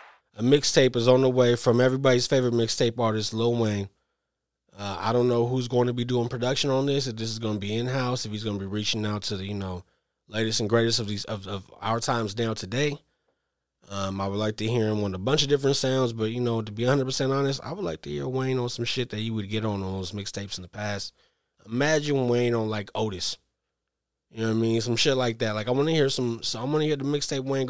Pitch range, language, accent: 100-125 Hz, English, American